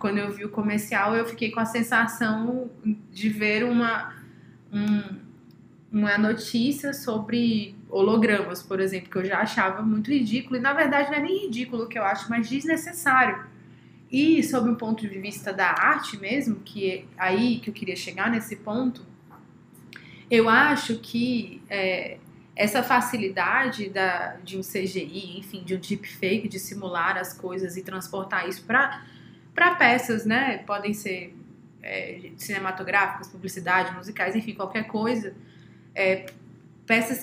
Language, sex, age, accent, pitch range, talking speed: Portuguese, female, 20-39, Brazilian, 195-235 Hz, 145 wpm